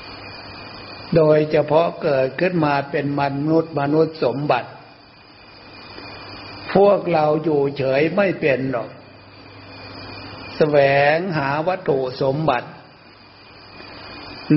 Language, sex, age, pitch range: Thai, male, 60-79, 115-150 Hz